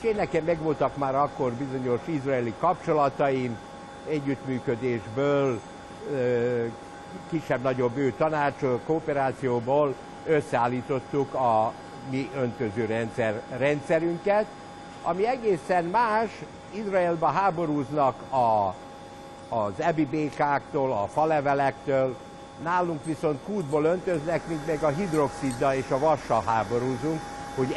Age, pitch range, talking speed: 60-79, 125-160 Hz, 95 wpm